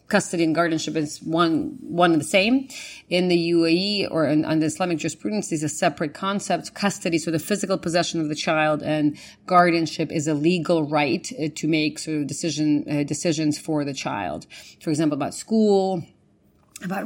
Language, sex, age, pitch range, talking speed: English, female, 30-49, 155-180 Hz, 175 wpm